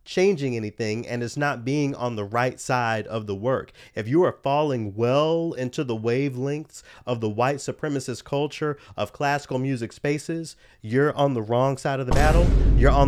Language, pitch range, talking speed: English, 115-140 Hz, 185 wpm